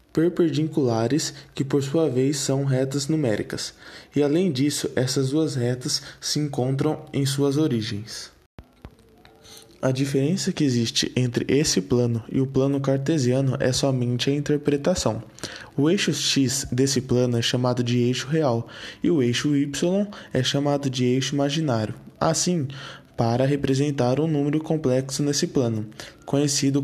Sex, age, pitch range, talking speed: male, 20-39, 125-145 Hz, 140 wpm